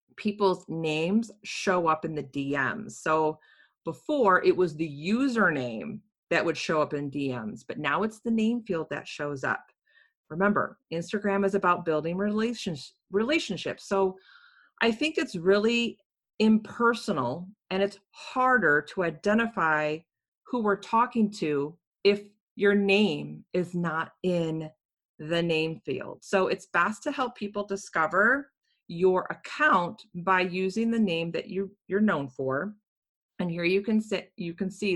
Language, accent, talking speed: English, American, 145 wpm